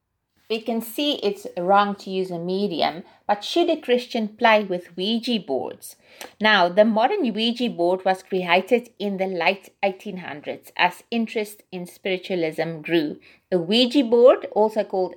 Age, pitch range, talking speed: 30-49, 175-225 Hz, 150 wpm